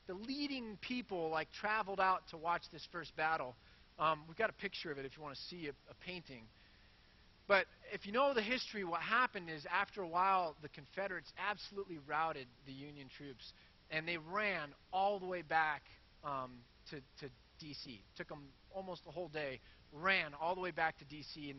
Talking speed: 195 wpm